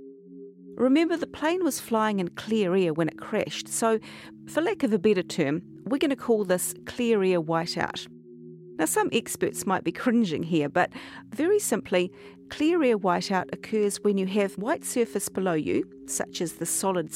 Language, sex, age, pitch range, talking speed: English, female, 50-69, 180-235 Hz, 180 wpm